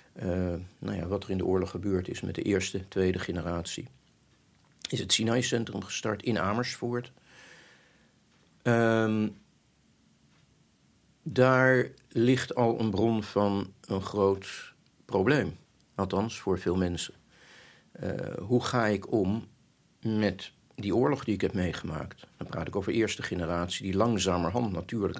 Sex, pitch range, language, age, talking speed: male, 95-115 Hz, Dutch, 50-69, 130 wpm